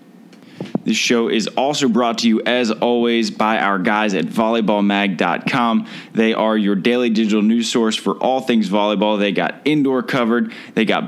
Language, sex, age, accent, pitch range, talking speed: English, male, 20-39, American, 105-135 Hz, 170 wpm